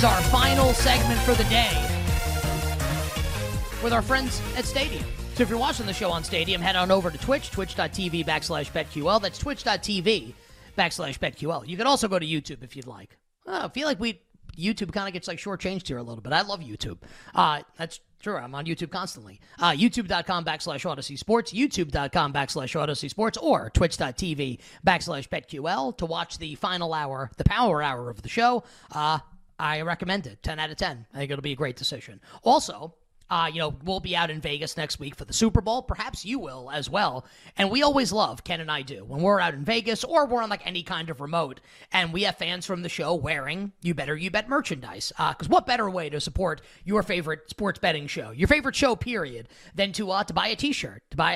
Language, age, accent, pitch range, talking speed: English, 30-49, American, 150-210 Hz, 215 wpm